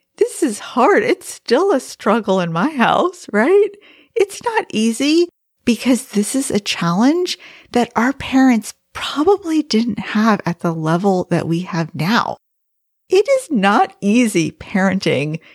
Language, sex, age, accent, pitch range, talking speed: English, female, 40-59, American, 190-270 Hz, 145 wpm